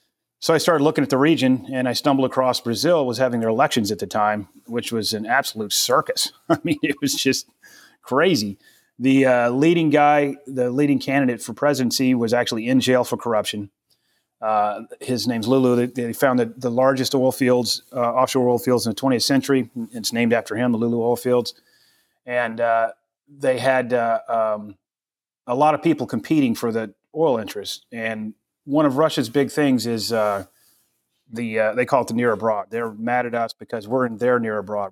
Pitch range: 115-135 Hz